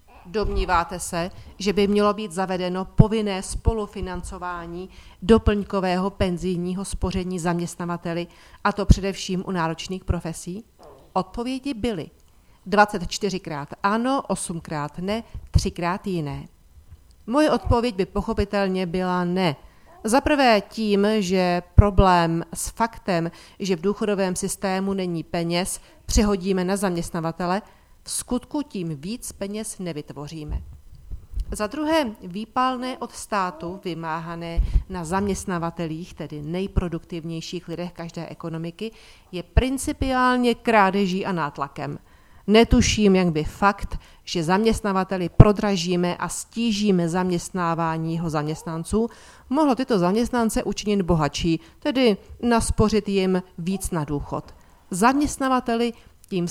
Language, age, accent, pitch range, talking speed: Czech, 40-59, native, 170-210 Hz, 105 wpm